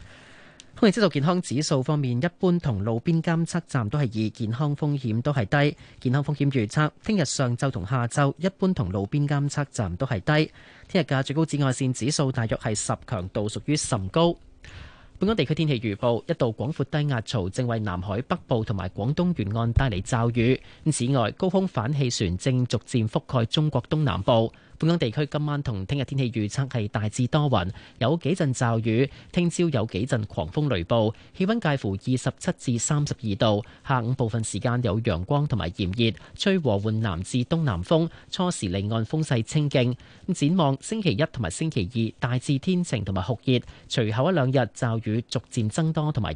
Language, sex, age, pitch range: Chinese, male, 30-49, 110-150 Hz